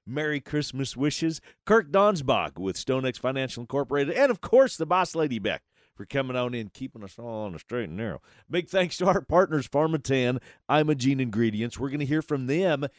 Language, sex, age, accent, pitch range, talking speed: English, male, 40-59, American, 115-165 Hz, 195 wpm